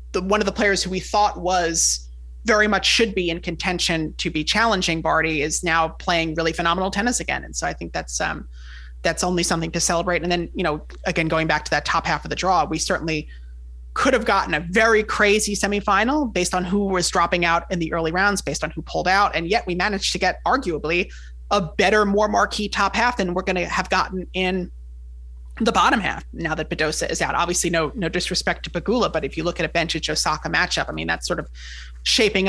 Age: 30-49